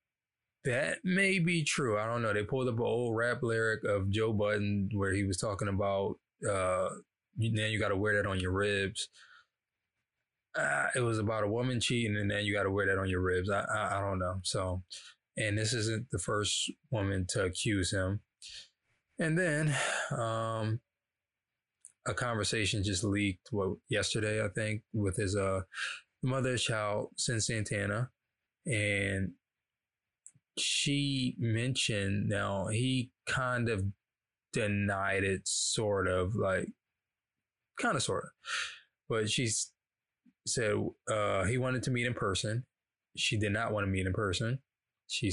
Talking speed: 155 wpm